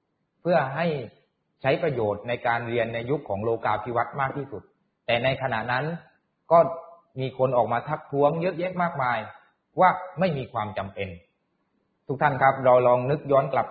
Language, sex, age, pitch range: Thai, male, 30-49, 125-160 Hz